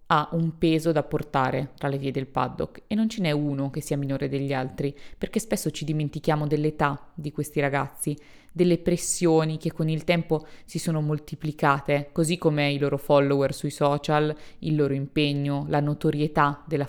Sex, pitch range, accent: female, 145-160 Hz, native